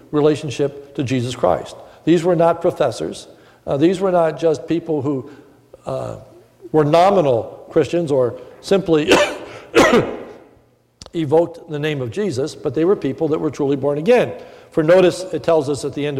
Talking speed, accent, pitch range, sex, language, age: 160 wpm, American, 130-175 Hz, male, English, 60-79